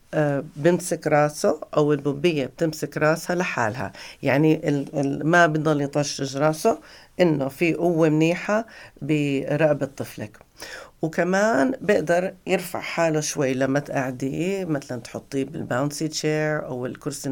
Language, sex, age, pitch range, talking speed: Arabic, female, 50-69, 140-170 Hz, 110 wpm